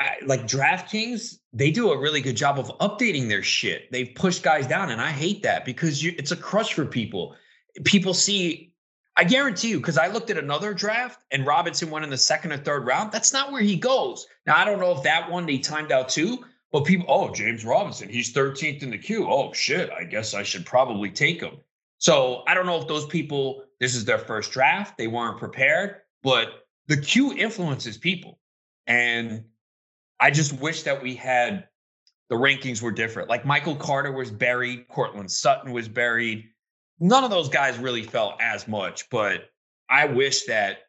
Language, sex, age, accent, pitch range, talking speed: English, male, 30-49, American, 130-205 Hz, 195 wpm